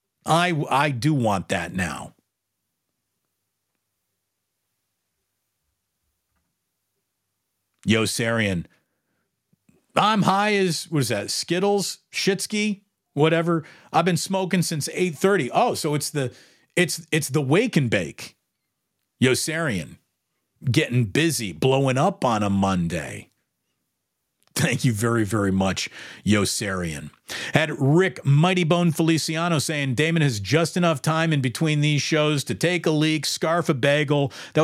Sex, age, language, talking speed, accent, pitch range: male, 40-59, English, 120 wpm, American, 120-165 Hz